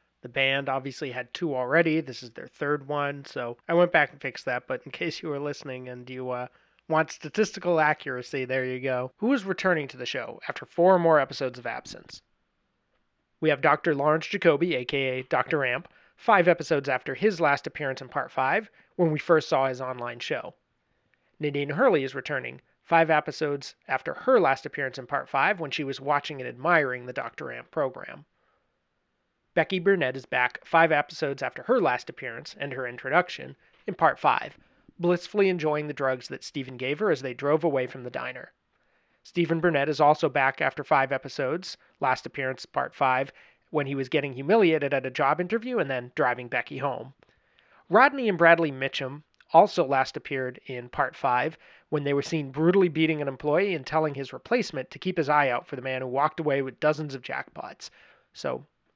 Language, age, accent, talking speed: English, 30-49, American, 190 wpm